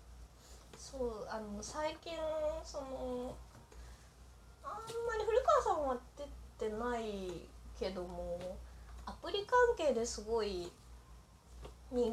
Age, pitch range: 20-39, 200-305 Hz